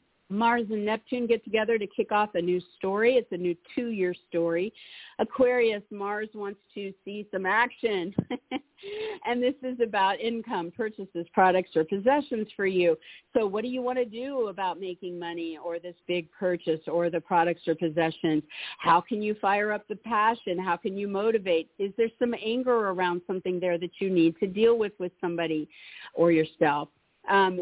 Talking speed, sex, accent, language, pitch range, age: 180 wpm, female, American, English, 175-225 Hz, 50-69